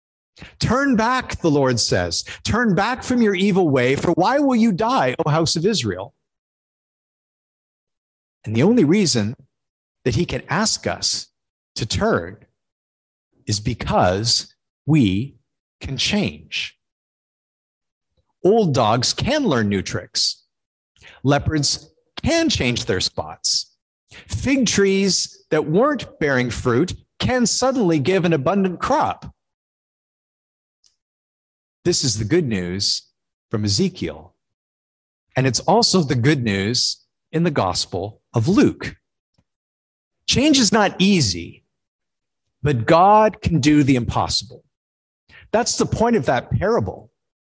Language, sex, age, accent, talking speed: English, male, 50-69, American, 115 wpm